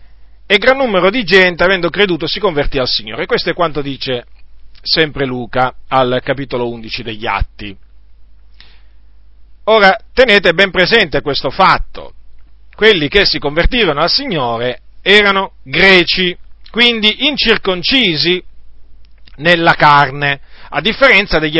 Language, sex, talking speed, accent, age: Italian, male, 120 wpm, native, 40-59